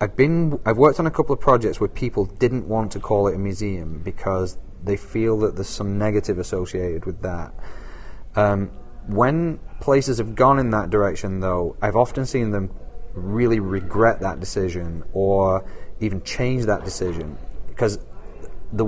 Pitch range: 95-125 Hz